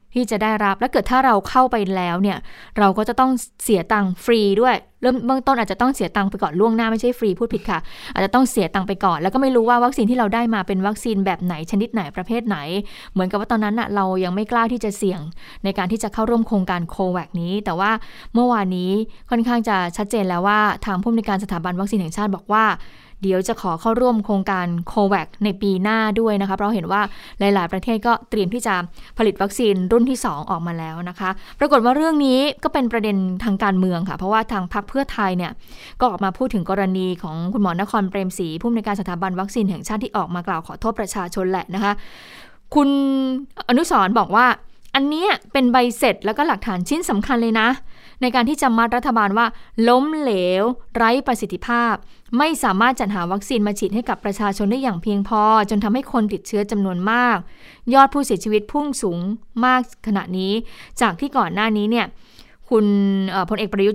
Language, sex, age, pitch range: Thai, female, 20-39, 195-245 Hz